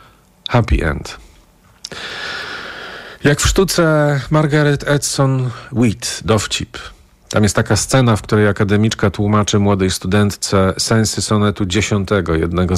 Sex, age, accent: male, 40-59, native